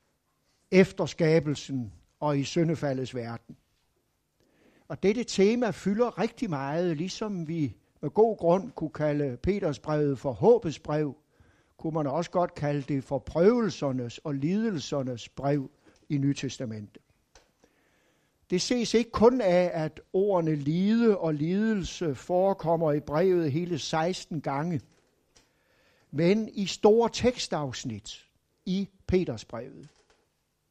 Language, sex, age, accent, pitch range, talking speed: Danish, male, 60-79, native, 140-195 Hz, 115 wpm